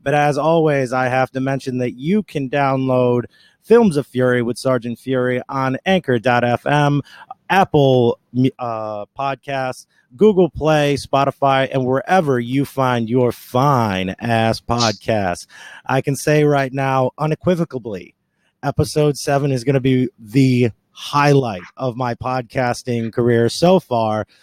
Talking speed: 130 wpm